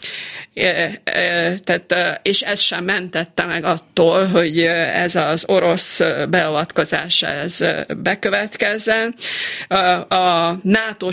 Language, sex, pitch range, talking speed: Hungarian, female, 170-190 Hz, 90 wpm